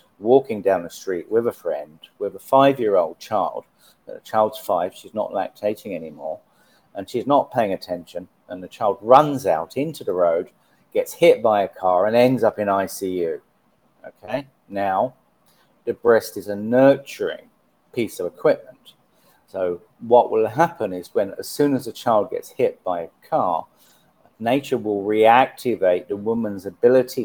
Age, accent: 40-59, British